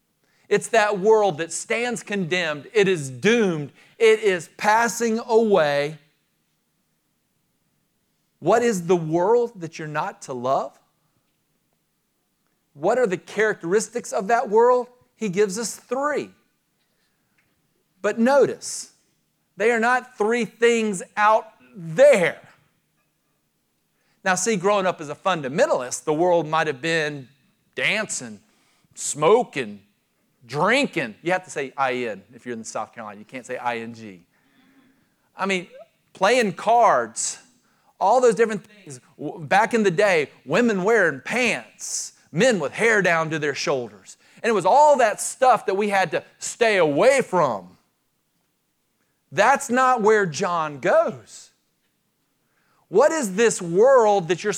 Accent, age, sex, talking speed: American, 40-59, male, 130 wpm